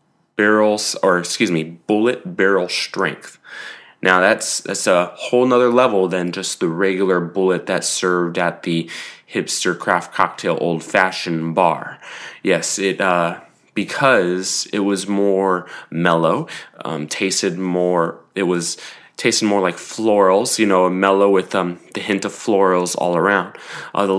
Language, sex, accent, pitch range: English, male, American, 85-100 Hz